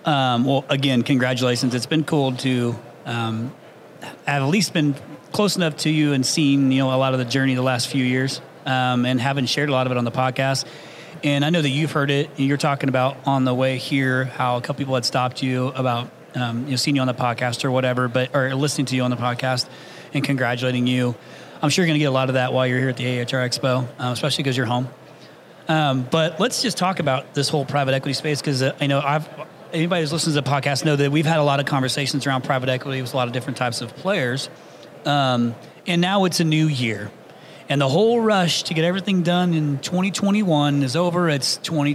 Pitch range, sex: 130-155 Hz, male